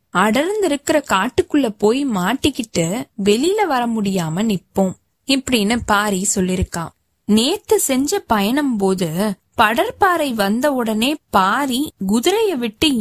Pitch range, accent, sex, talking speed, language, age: 195-280 Hz, native, female, 100 wpm, Tamil, 20-39